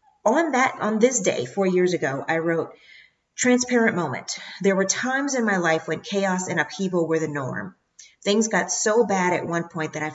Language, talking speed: English, 200 wpm